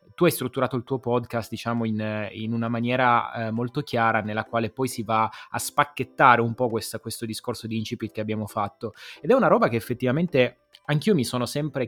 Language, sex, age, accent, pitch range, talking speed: Italian, male, 20-39, native, 115-145 Hz, 205 wpm